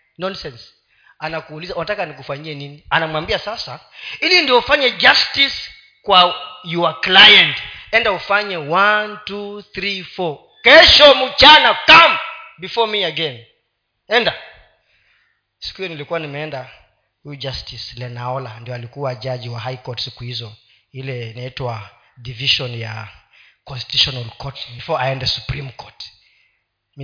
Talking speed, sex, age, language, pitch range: 120 wpm, male, 30-49, Swahili, 130-190 Hz